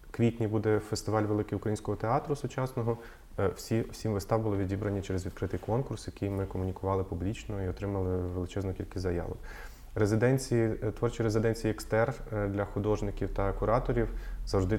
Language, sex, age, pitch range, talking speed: Russian, male, 20-39, 95-110 Hz, 140 wpm